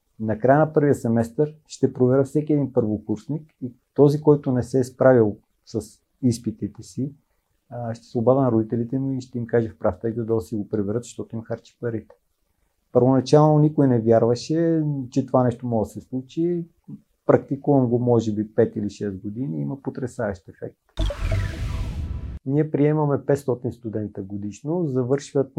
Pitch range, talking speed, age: 115-135 Hz, 165 wpm, 50-69